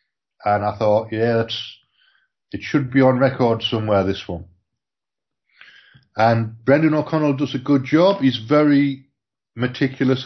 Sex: male